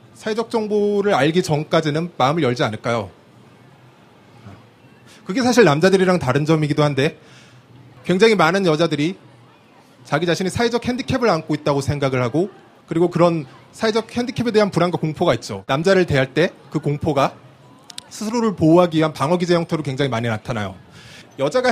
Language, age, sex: Korean, 30-49, male